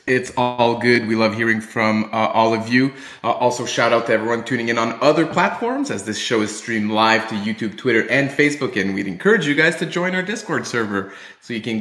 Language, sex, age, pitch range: English, male, 30-49, 110-135 Hz